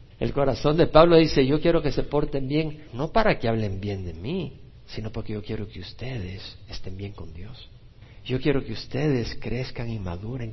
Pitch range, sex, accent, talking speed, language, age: 110-160 Hz, male, Mexican, 200 wpm, Spanish, 50-69